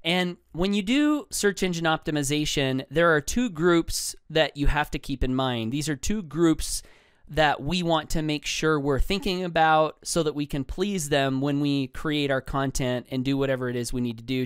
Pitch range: 135-175 Hz